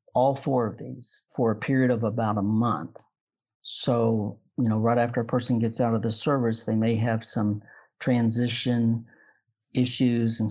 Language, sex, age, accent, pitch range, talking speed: English, male, 50-69, American, 110-125 Hz, 170 wpm